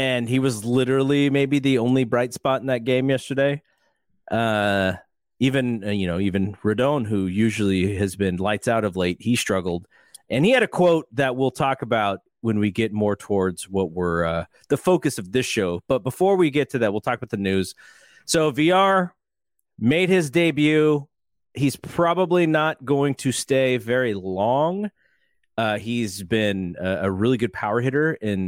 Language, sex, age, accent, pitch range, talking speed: English, male, 30-49, American, 100-140 Hz, 180 wpm